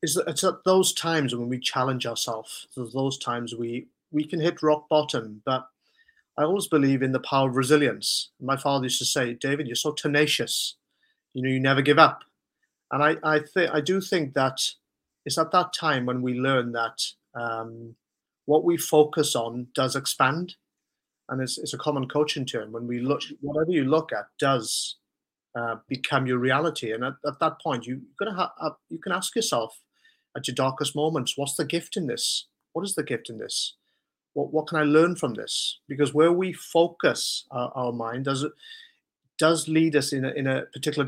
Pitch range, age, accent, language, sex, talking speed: 125-155 Hz, 30-49, British, English, male, 195 wpm